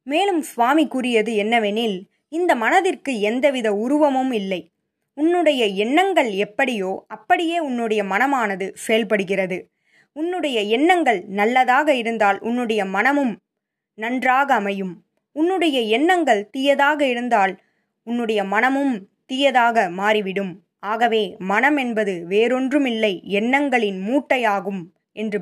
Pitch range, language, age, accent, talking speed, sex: 210-285 Hz, Tamil, 20-39, native, 90 wpm, female